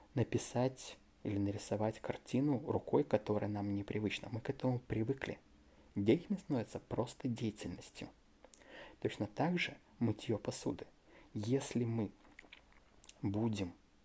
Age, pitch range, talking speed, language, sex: 20-39, 105-140 Hz, 105 wpm, Russian, male